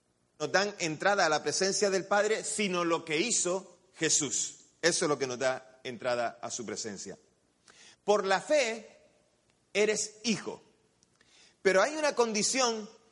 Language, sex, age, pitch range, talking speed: Spanish, male, 30-49, 155-220 Hz, 145 wpm